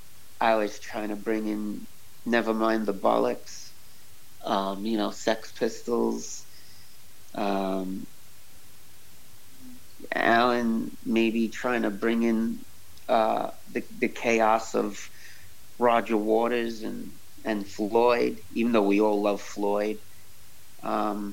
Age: 40-59